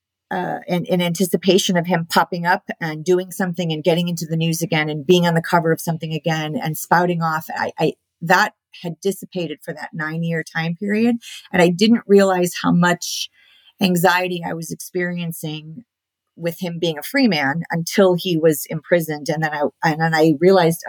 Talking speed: 190 wpm